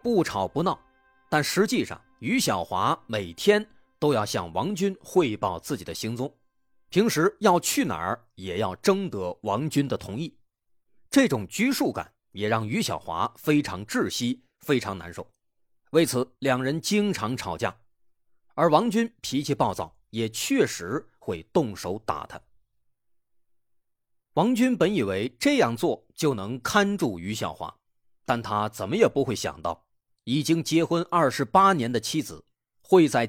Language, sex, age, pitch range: Chinese, male, 30-49, 115-170 Hz